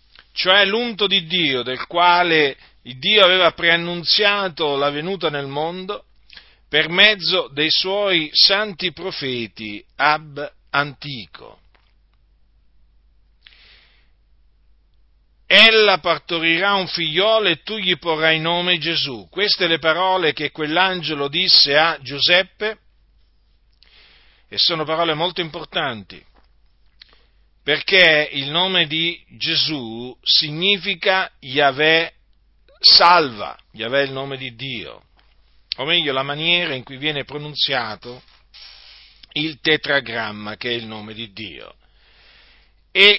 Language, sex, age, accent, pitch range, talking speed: Italian, male, 50-69, native, 130-180 Hz, 105 wpm